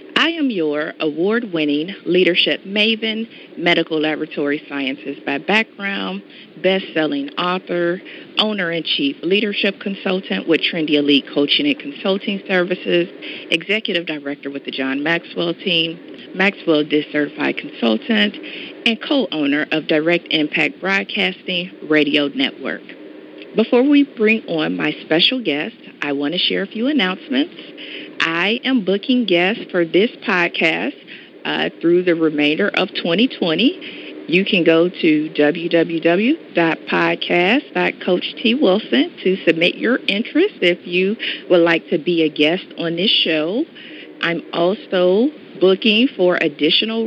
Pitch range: 160-225 Hz